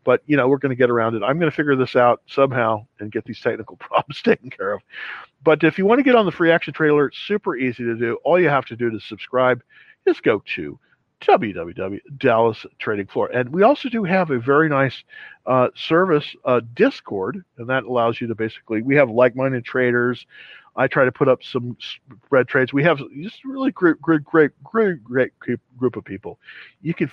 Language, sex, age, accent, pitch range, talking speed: English, male, 50-69, American, 120-155 Hz, 215 wpm